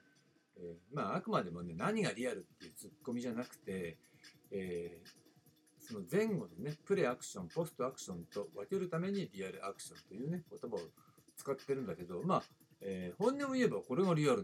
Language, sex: Japanese, male